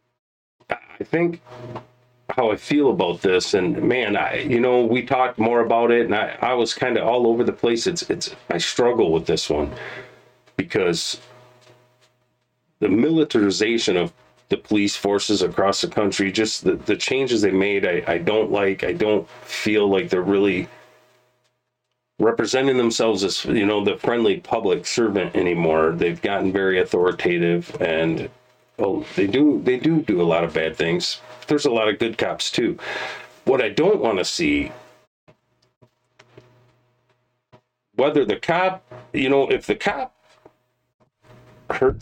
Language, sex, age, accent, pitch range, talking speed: English, male, 40-59, American, 100-125 Hz, 155 wpm